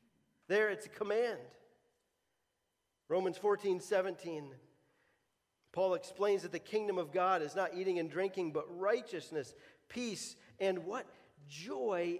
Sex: male